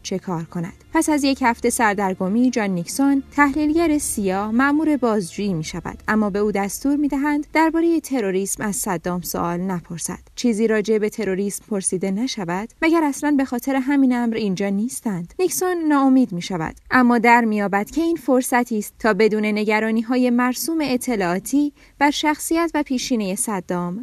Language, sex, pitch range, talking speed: Persian, female, 195-270 Hz, 150 wpm